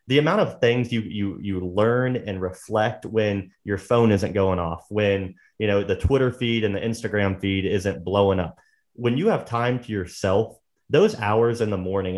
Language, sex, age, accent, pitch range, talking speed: English, male, 30-49, American, 95-120 Hz, 195 wpm